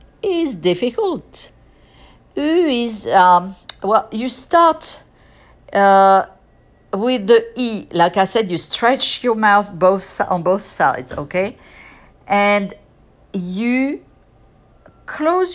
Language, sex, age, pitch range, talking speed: French, female, 50-69, 175-245 Hz, 105 wpm